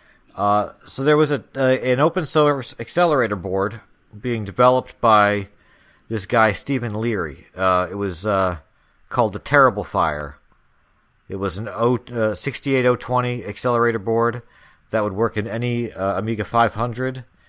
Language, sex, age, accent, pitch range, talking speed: English, male, 40-59, American, 95-125 Hz, 140 wpm